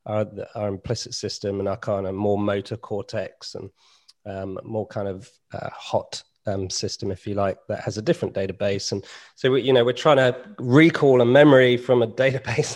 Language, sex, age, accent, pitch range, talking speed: English, male, 30-49, British, 105-130 Hz, 195 wpm